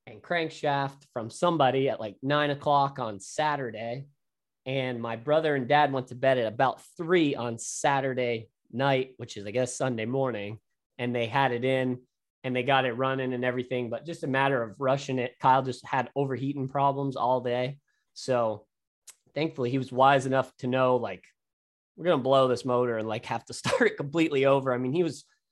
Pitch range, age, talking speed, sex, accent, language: 115-140 Hz, 20-39, 195 wpm, male, American, English